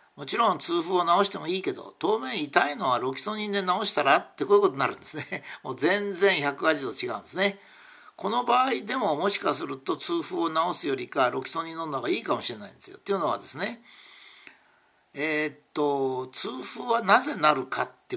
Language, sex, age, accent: Japanese, male, 60-79, native